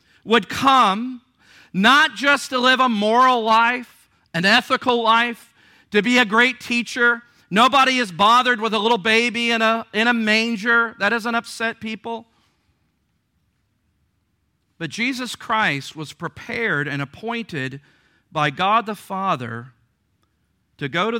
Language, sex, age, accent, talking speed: English, male, 40-59, American, 130 wpm